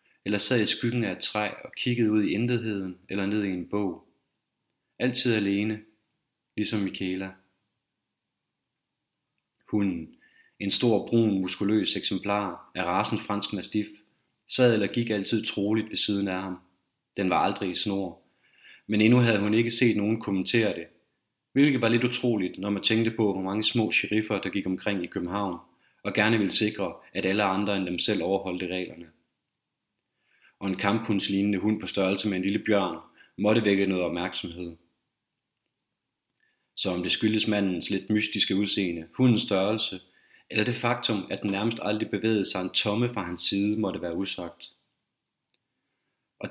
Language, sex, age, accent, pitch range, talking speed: Danish, male, 30-49, native, 95-110 Hz, 160 wpm